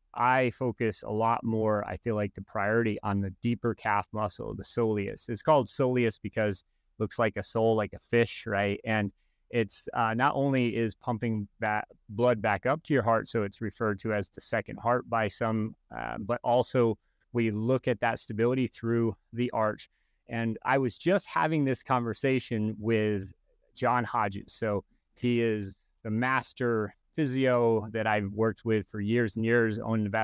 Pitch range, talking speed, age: 110-125 Hz, 175 wpm, 30-49